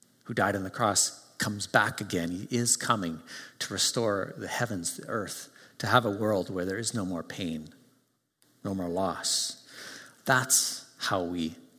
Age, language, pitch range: 50-69, English, 95-120 Hz